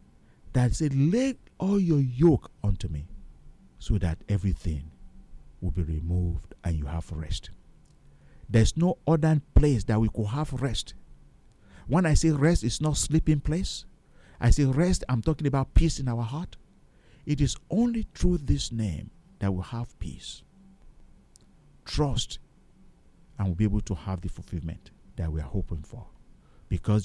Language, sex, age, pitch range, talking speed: English, male, 50-69, 90-145 Hz, 155 wpm